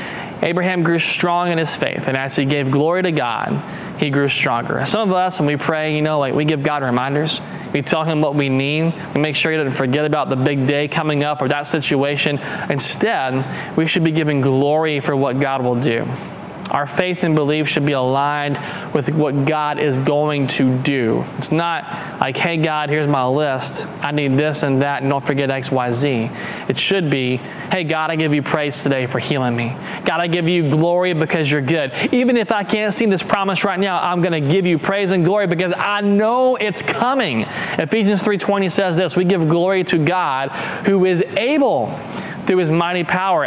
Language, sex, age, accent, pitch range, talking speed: English, male, 20-39, American, 140-180 Hz, 210 wpm